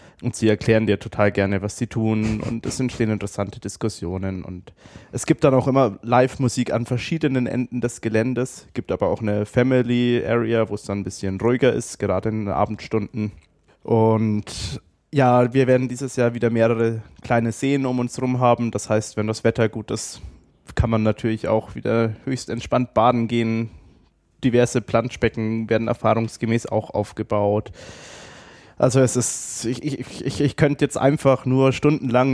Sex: male